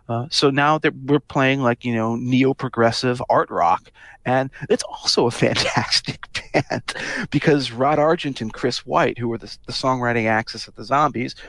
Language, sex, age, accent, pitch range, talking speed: English, male, 40-59, American, 110-135 Hz, 170 wpm